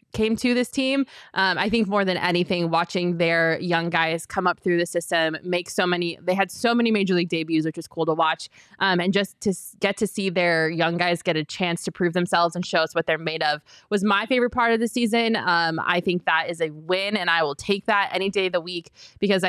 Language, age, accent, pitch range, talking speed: English, 20-39, American, 165-190 Hz, 255 wpm